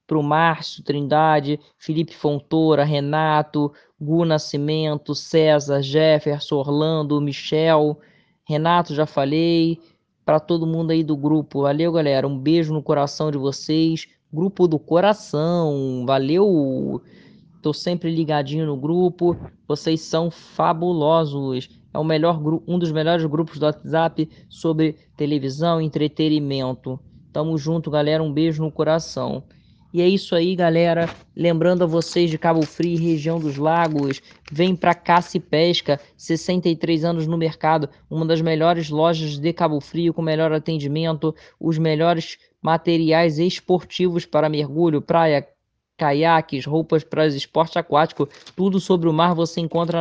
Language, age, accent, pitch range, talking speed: Portuguese, 20-39, Brazilian, 150-170 Hz, 135 wpm